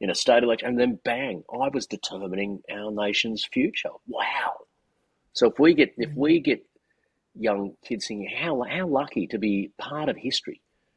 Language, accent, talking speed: English, Australian, 170 wpm